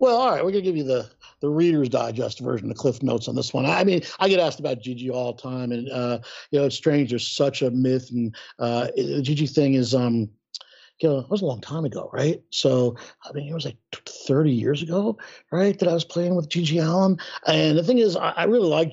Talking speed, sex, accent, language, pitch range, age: 255 wpm, male, American, English, 125-165 Hz, 50-69